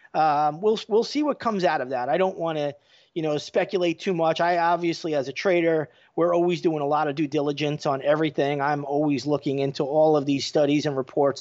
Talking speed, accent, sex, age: 225 wpm, American, male, 30-49